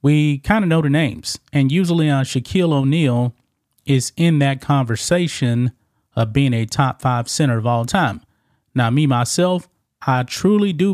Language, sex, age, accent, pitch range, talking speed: English, male, 30-49, American, 120-155 Hz, 165 wpm